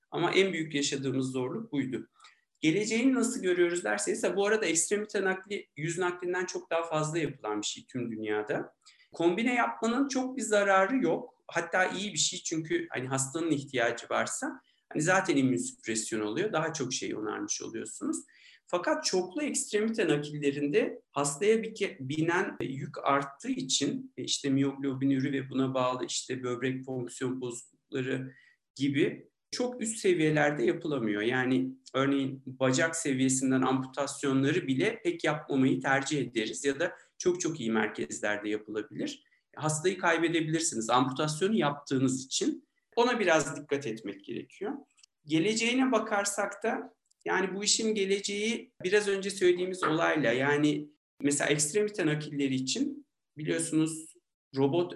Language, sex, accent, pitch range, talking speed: Turkish, male, native, 135-200 Hz, 125 wpm